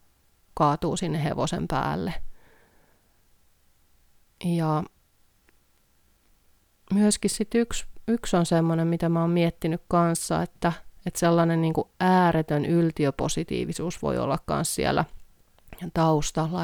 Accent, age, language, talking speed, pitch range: native, 30-49, Finnish, 95 wpm, 150-170 Hz